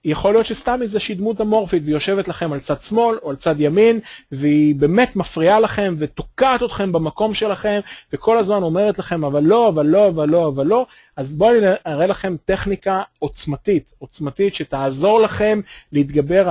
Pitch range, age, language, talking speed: 150-210 Hz, 30-49, English, 165 wpm